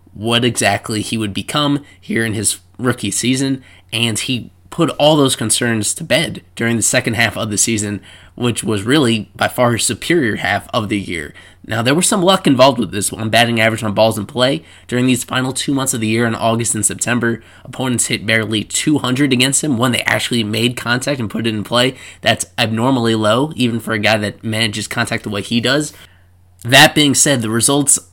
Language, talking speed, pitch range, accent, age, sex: English, 210 wpm, 105-125 Hz, American, 20-39, male